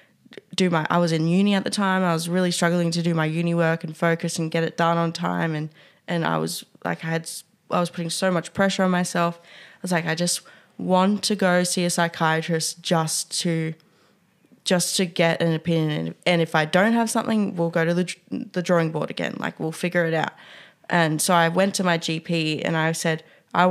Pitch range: 165-185 Hz